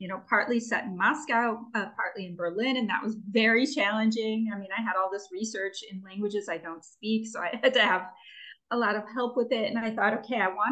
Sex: female